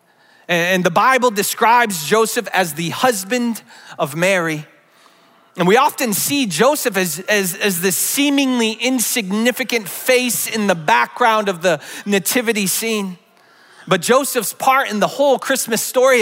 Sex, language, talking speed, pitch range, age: male, English, 135 wpm, 185-225 Hz, 30-49